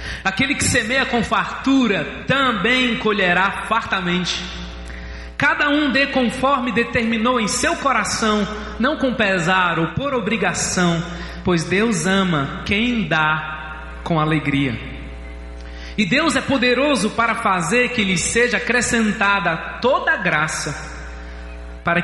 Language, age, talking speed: Portuguese, 20-39, 115 wpm